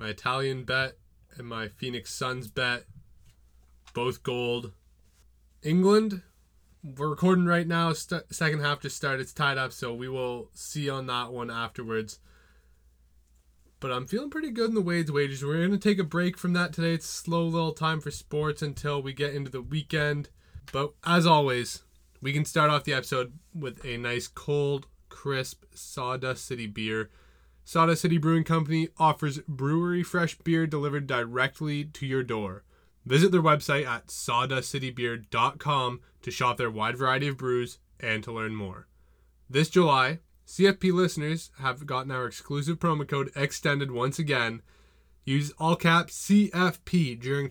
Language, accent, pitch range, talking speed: English, American, 120-160 Hz, 160 wpm